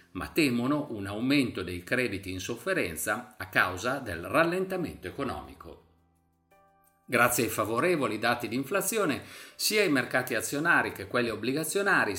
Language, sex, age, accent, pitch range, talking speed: Italian, male, 50-69, native, 100-155 Hz, 130 wpm